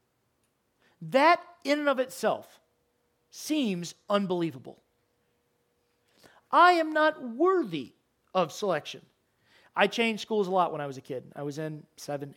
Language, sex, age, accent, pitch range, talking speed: English, male, 40-59, American, 180-245 Hz, 130 wpm